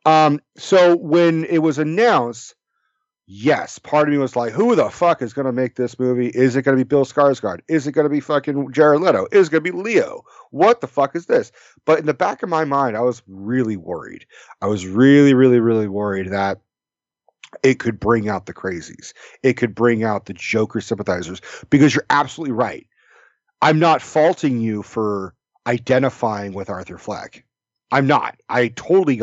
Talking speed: 195 wpm